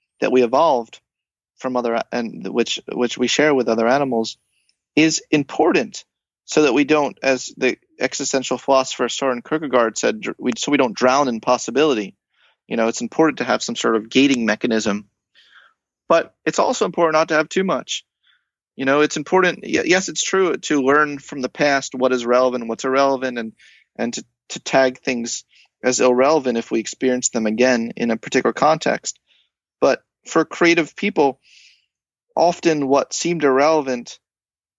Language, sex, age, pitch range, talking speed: English, male, 30-49, 120-155 Hz, 165 wpm